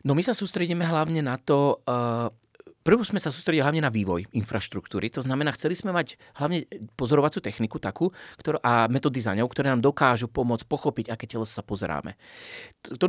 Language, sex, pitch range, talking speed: Slovak, male, 115-155 Hz, 175 wpm